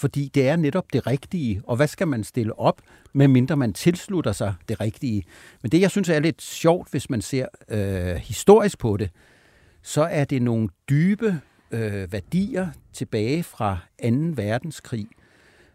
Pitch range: 115-150 Hz